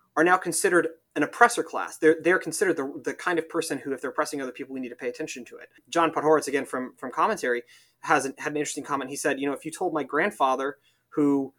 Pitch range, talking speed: 130-160 Hz, 255 wpm